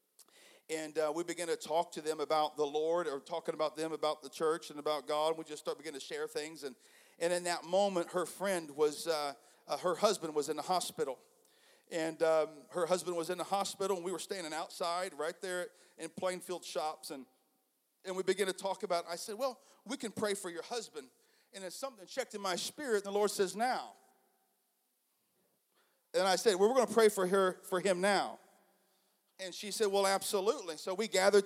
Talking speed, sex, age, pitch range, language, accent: 215 wpm, male, 40-59, 175-215 Hz, English, American